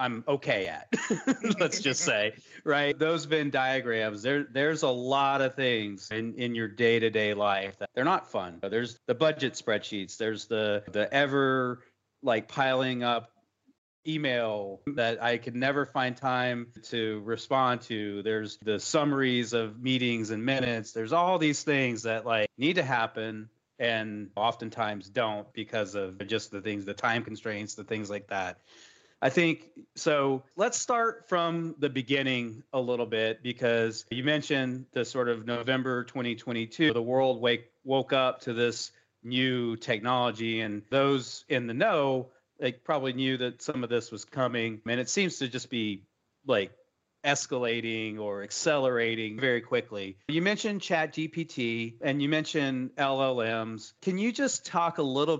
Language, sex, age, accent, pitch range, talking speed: English, male, 30-49, American, 110-140 Hz, 155 wpm